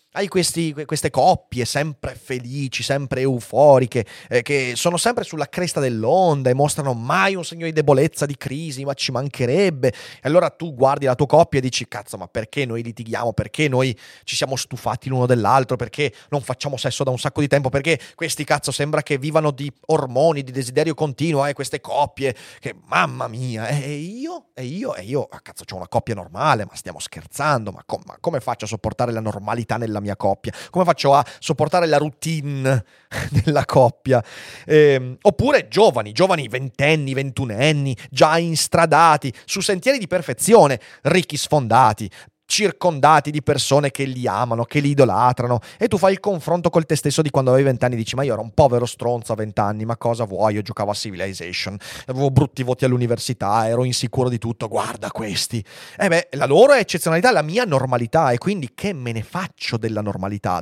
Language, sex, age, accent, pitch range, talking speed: Italian, male, 30-49, native, 120-155 Hz, 190 wpm